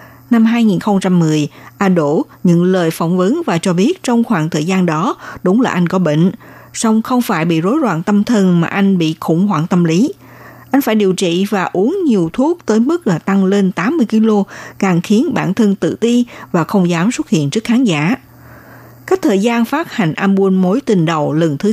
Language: Vietnamese